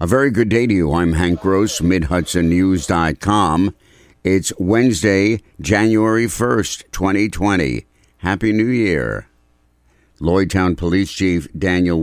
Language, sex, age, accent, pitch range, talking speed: English, male, 60-79, American, 85-95 Hz, 110 wpm